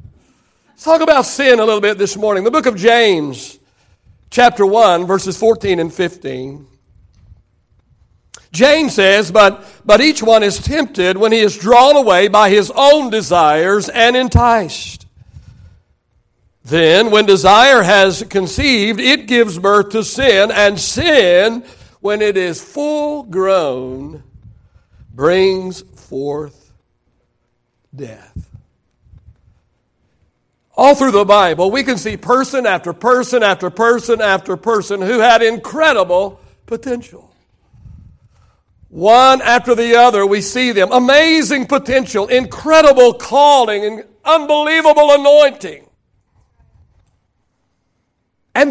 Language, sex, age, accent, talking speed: English, male, 60-79, American, 110 wpm